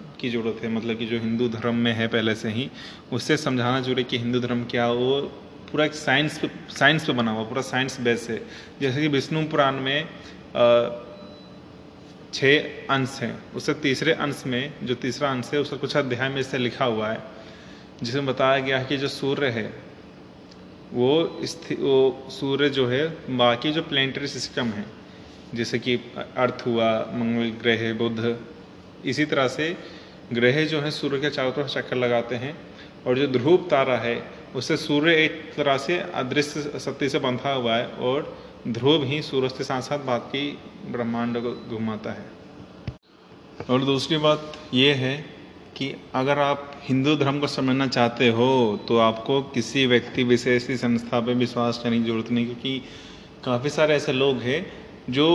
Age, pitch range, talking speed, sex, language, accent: 30-49, 120-145 Hz, 170 wpm, male, Hindi, native